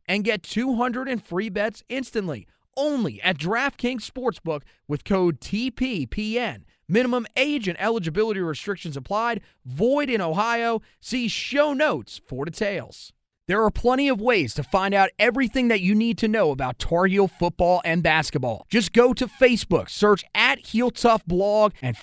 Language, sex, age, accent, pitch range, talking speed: English, male, 30-49, American, 160-225 Hz, 160 wpm